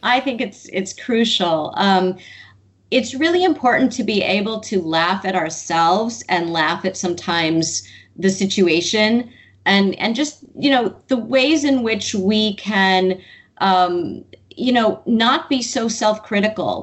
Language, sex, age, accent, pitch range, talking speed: English, female, 30-49, American, 185-235 Hz, 145 wpm